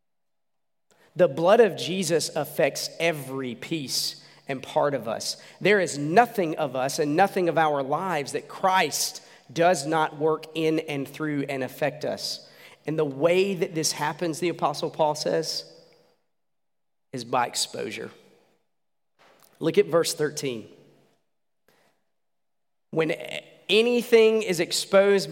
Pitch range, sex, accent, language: 145-190 Hz, male, American, English